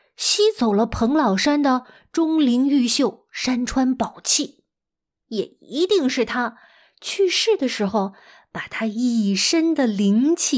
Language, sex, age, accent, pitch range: Chinese, female, 20-39, native, 225-315 Hz